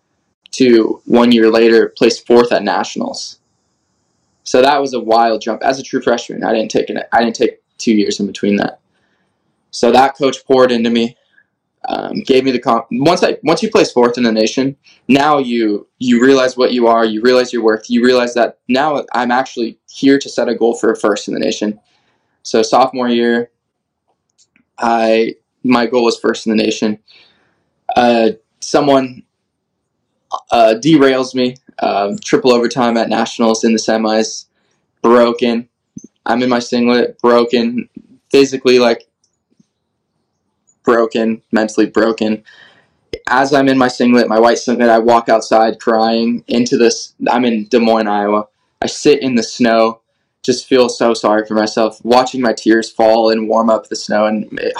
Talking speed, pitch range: 170 wpm, 110-125 Hz